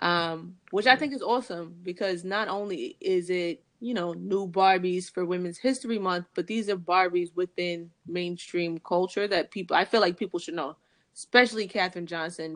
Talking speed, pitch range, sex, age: 175 wpm, 175-210 Hz, female, 20-39